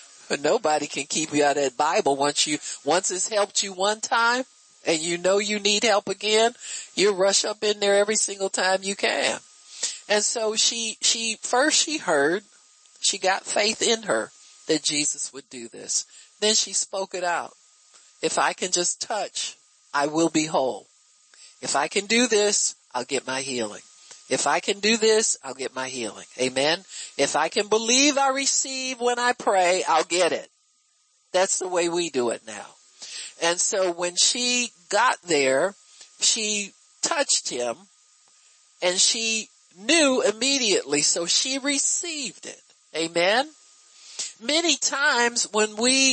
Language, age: English, 50-69